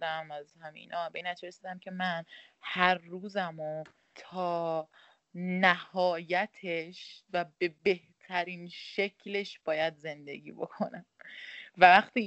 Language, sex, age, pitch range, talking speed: Persian, female, 20-39, 165-190 Hz, 100 wpm